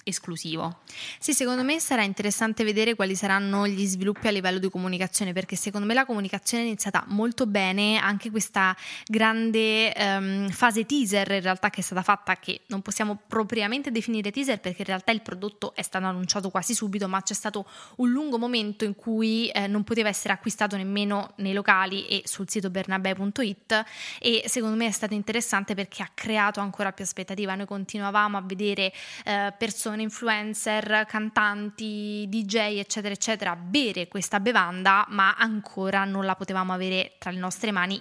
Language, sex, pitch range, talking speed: English, female, 195-220 Hz, 170 wpm